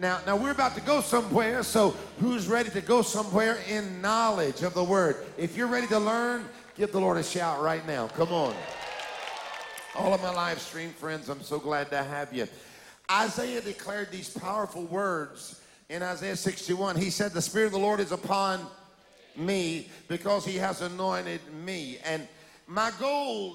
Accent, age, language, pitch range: American, 50-69, English, 175-220 Hz